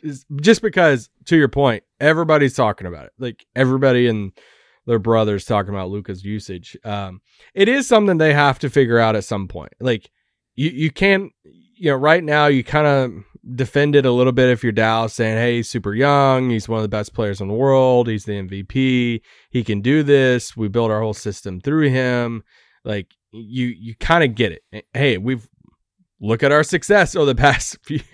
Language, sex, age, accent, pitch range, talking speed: English, male, 20-39, American, 110-145 Hz, 200 wpm